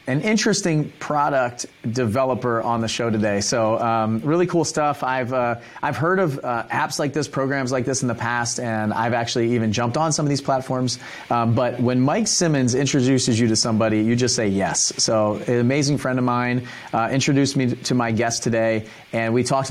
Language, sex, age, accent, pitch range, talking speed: English, male, 30-49, American, 110-135 Hz, 205 wpm